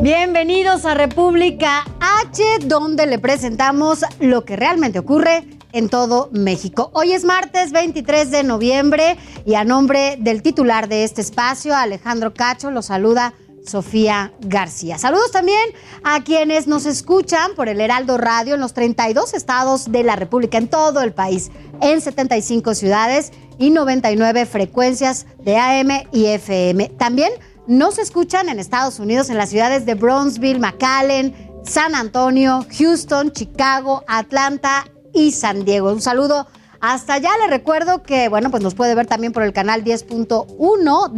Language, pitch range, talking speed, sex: Spanish, 225-300 Hz, 150 wpm, female